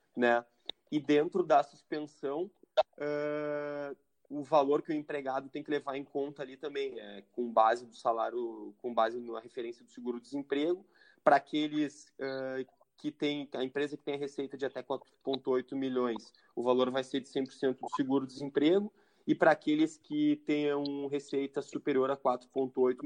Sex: male